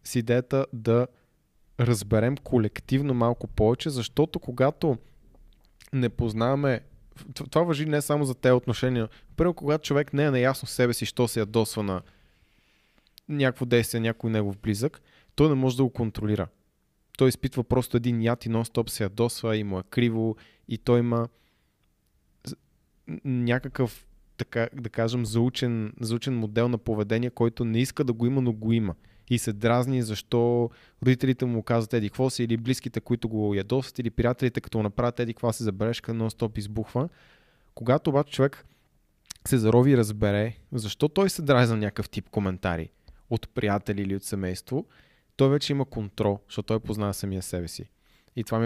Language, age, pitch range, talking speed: Bulgarian, 20-39, 110-130 Hz, 165 wpm